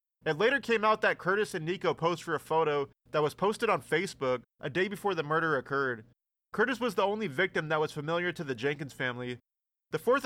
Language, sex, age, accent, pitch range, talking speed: English, male, 30-49, American, 140-190 Hz, 215 wpm